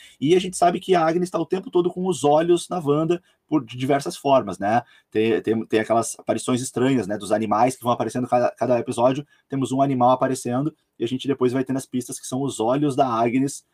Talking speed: 235 wpm